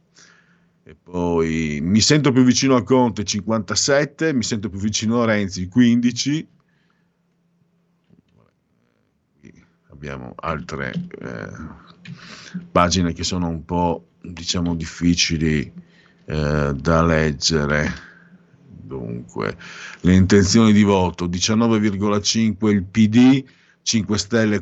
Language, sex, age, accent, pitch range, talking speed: Italian, male, 50-69, native, 85-120 Hz, 95 wpm